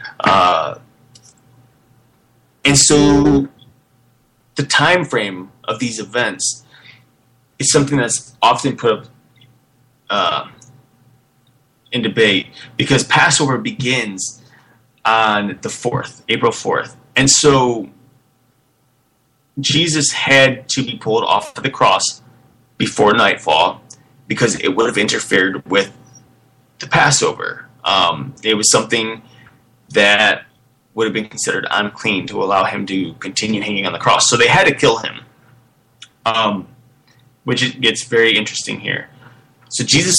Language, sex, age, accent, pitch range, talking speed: English, male, 30-49, American, 115-130 Hz, 120 wpm